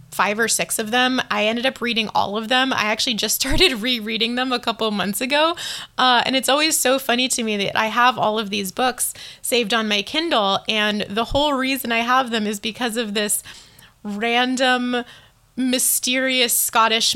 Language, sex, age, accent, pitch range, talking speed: English, female, 20-39, American, 205-245 Hz, 190 wpm